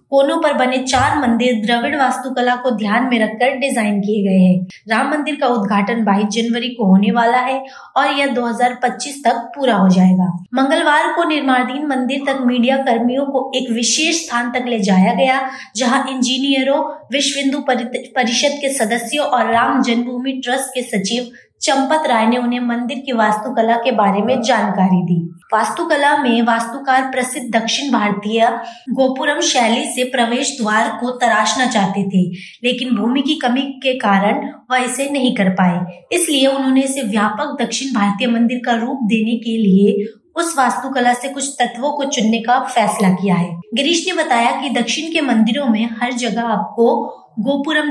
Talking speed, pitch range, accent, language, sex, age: 135 wpm, 225-270 Hz, Indian, English, female, 20-39